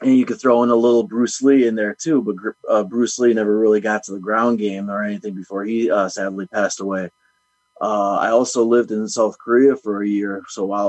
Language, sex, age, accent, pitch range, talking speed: English, male, 30-49, American, 100-115 Hz, 235 wpm